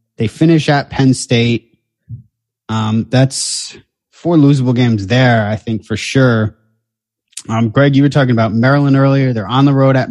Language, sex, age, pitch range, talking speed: English, male, 20-39, 110-135 Hz, 165 wpm